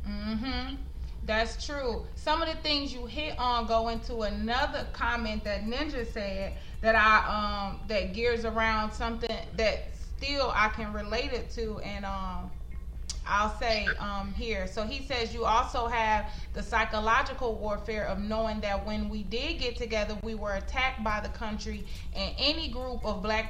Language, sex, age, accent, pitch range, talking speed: English, female, 30-49, American, 215-245 Hz, 170 wpm